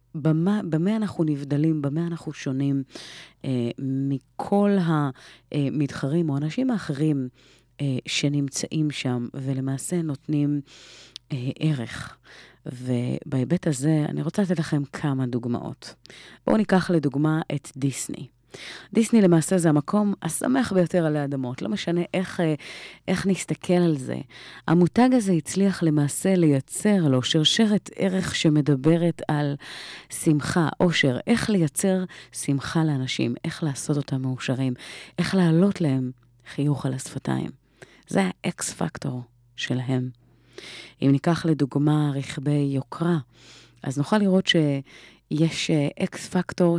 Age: 30-49